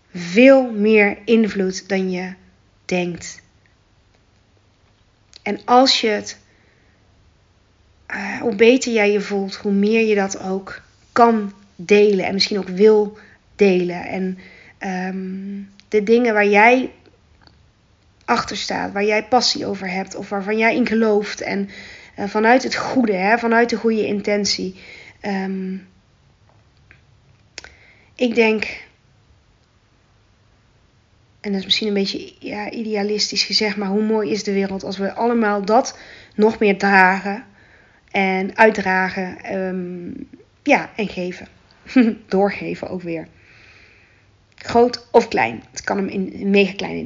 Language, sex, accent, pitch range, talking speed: Dutch, female, Dutch, 180-215 Hz, 120 wpm